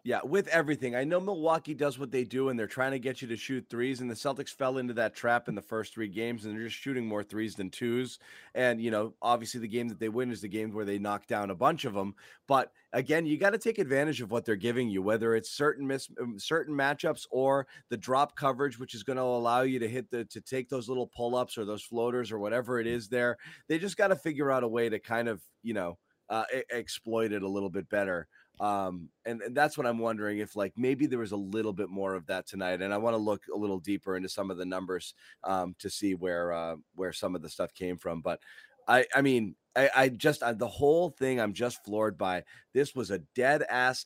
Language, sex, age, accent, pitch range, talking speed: English, male, 30-49, American, 105-130 Hz, 255 wpm